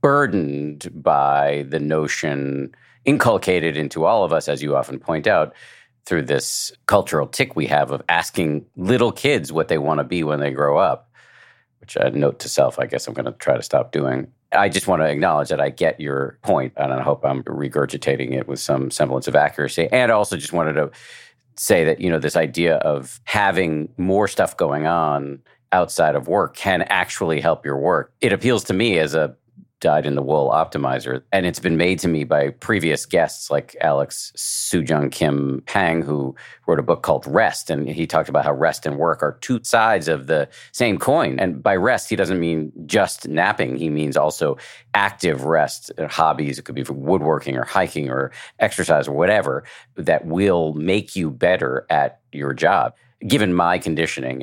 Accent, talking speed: American, 195 wpm